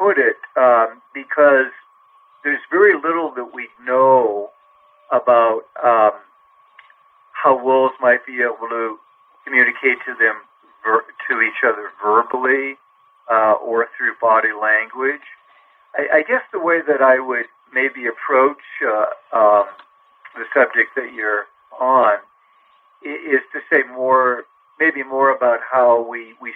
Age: 50-69